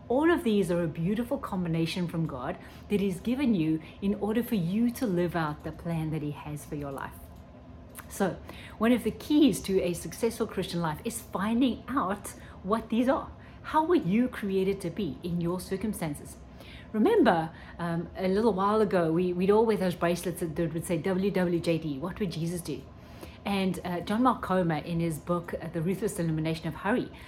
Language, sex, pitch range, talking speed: English, female, 170-220 Hz, 185 wpm